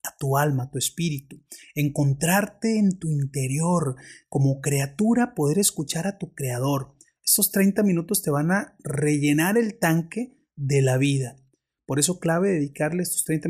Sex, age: male, 30-49